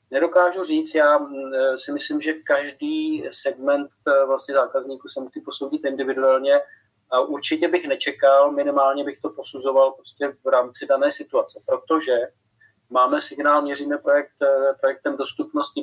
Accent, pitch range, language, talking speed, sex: native, 125-150 Hz, Czech, 130 wpm, male